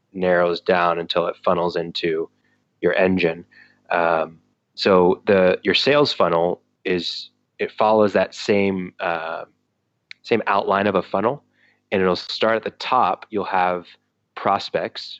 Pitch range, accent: 85-95 Hz, American